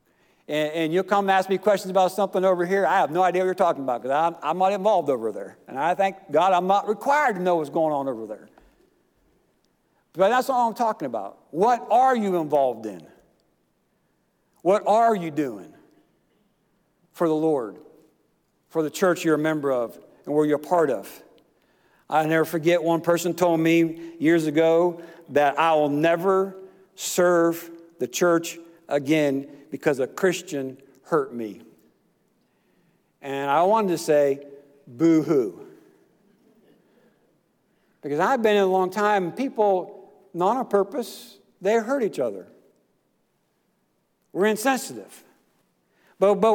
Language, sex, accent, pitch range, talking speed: English, male, American, 160-220 Hz, 150 wpm